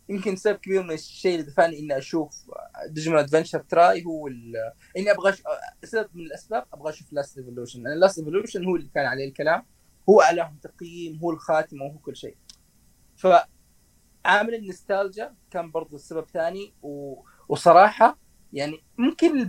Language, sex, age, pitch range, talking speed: Arabic, male, 20-39, 150-185 Hz, 140 wpm